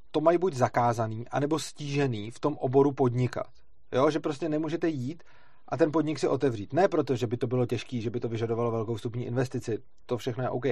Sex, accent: male, native